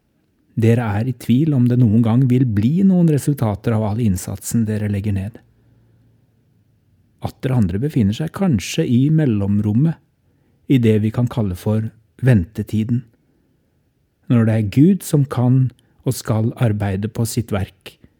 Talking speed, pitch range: 150 wpm, 110-135 Hz